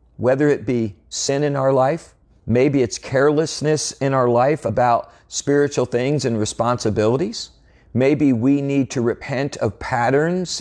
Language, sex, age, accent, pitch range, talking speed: English, male, 40-59, American, 110-145 Hz, 140 wpm